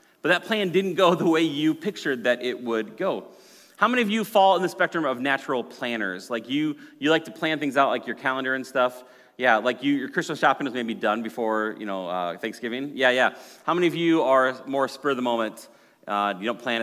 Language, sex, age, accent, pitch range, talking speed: English, male, 30-49, American, 125-180 Hz, 240 wpm